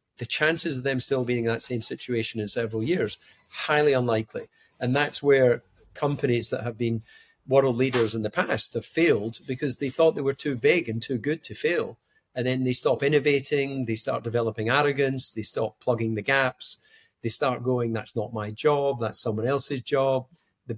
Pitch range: 115-135 Hz